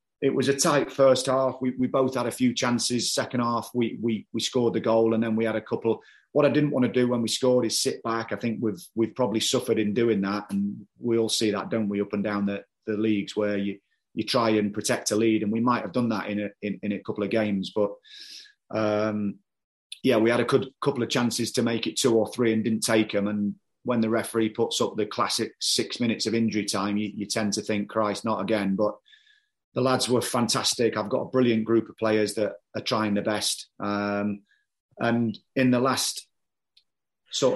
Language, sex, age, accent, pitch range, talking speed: English, male, 30-49, British, 105-120 Hz, 235 wpm